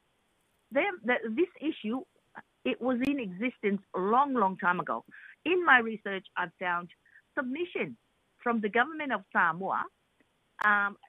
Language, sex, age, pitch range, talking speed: English, female, 50-69, 200-295 Hz, 130 wpm